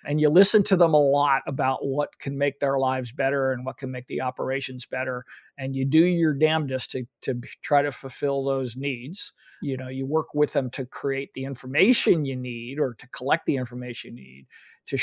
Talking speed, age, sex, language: 210 wpm, 50-69, male, English